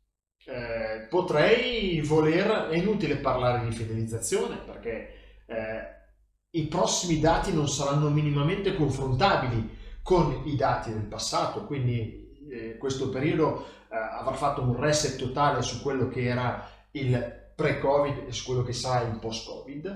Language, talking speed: Italian, 135 wpm